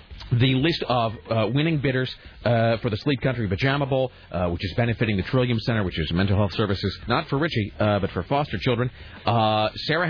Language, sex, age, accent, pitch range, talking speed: English, male, 40-59, American, 105-155 Hz, 210 wpm